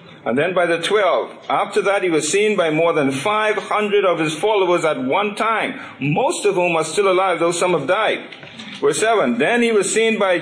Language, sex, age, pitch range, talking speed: English, male, 50-69, 150-200 Hz, 220 wpm